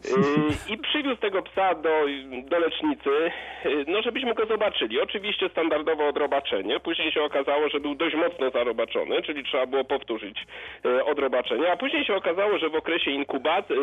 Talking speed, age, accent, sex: 150 wpm, 40-59, native, male